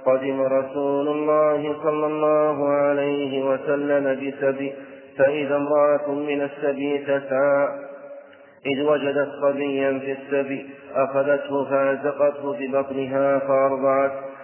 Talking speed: 90 wpm